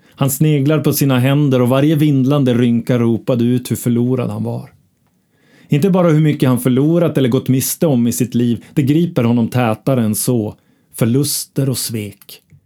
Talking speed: 175 wpm